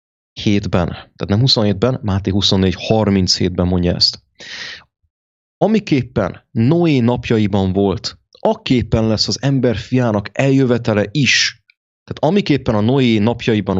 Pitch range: 100-135 Hz